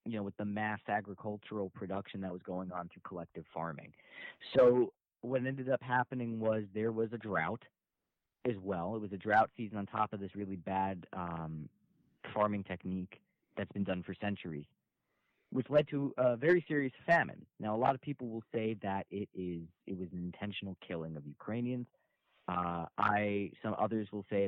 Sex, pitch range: male, 90-115 Hz